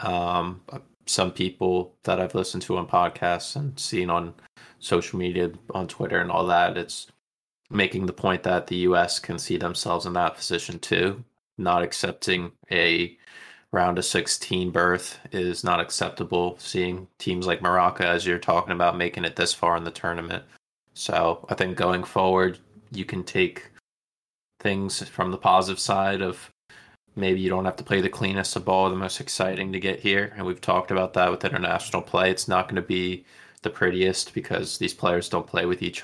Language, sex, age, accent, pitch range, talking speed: English, male, 20-39, American, 90-95 Hz, 185 wpm